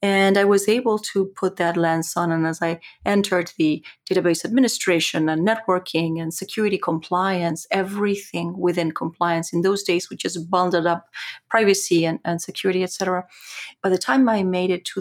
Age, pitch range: 40-59, 170-200 Hz